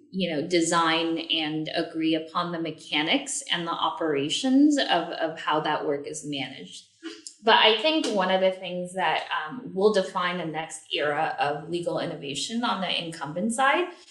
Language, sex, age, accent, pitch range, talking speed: English, female, 10-29, American, 160-210 Hz, 165 wpm